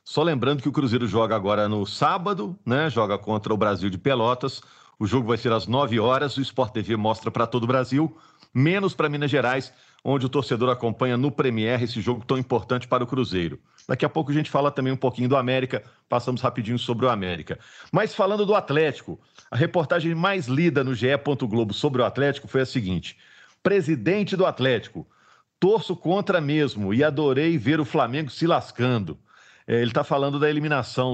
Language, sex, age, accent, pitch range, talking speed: Portuguese, male, 50-69, Brazilian, 120-145 Hz, 190 wpm